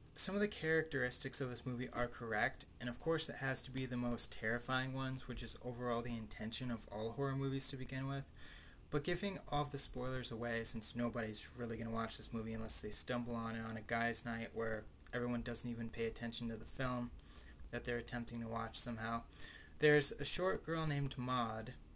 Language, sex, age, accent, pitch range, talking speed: English, male, 20-39, American, 115-130 Hz, 210 wpm